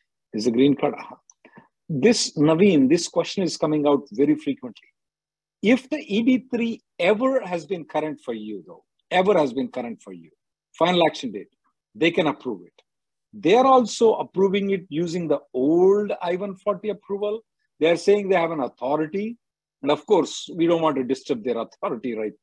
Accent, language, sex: Indian, English, male